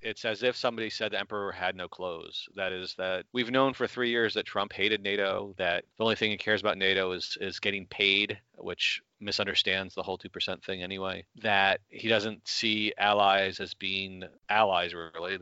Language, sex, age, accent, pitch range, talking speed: English, male, 30-49, American, 95-115 Hz, 195 wpm